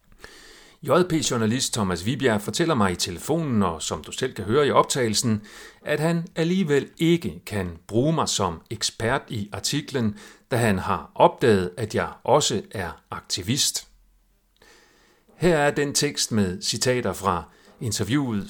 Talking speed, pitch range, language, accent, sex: 140 wpm, 100-130 Hz, Danish, native, male